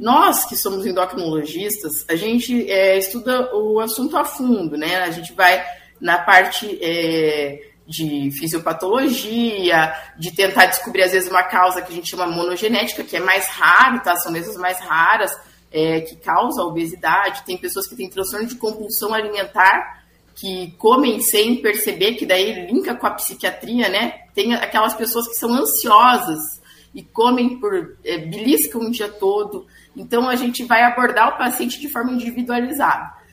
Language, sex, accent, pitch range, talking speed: Portuguese, female, Brazilian, 180-240 Hz, 160 wpm